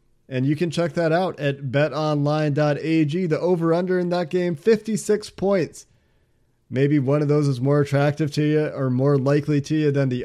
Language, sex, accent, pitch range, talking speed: English, male, American, 130-155 Hz, 180 wpm